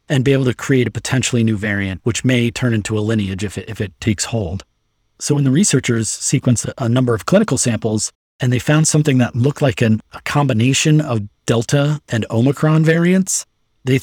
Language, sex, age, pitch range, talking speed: English, male, 30-49, 110-135 Hz, 200 wpm